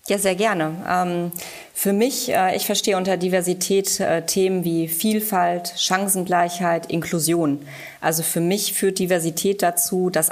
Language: German